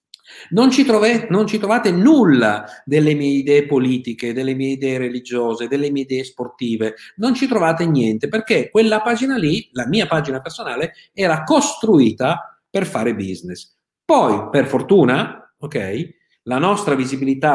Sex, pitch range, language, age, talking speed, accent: male, 125-185 Hz, Italian, 50-69, 140 wpm, native